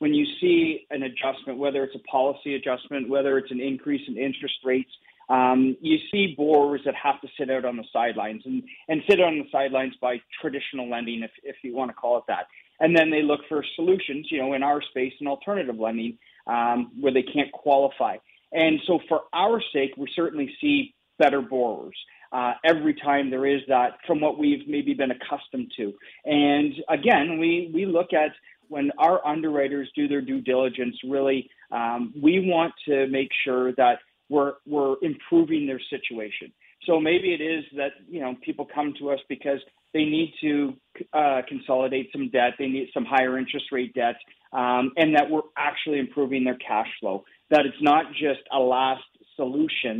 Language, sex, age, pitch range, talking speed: English, male, 40-59, 130-155 Hz, 185 wpm